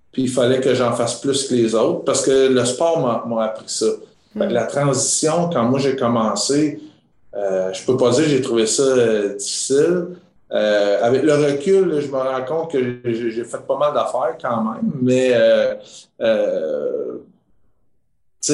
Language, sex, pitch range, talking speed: French, male, 115-140 Hz, 180 wpm